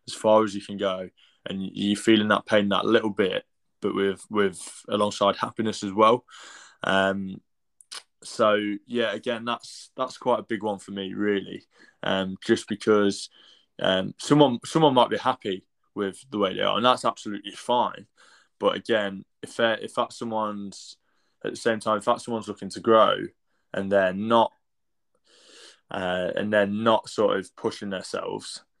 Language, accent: English, British